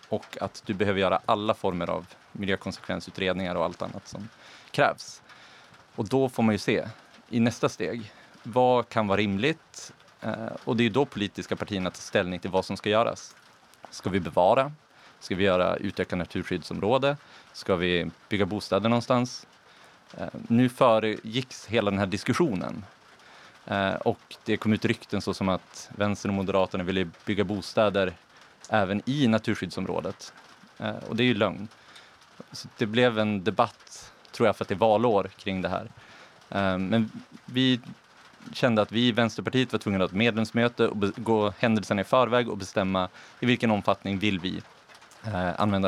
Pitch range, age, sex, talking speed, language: 95-120 Hz, 30-49, male, 160 wpm, Swedish